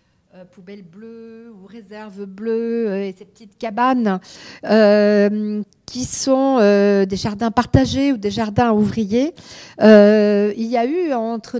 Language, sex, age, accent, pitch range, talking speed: French, female, 50-69, French, 195-255 Hz, 135 wpm